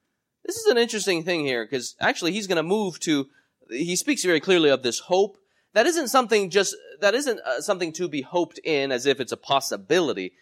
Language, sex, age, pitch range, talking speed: English, male, 20-39, 120-205 Hz, 205 wpm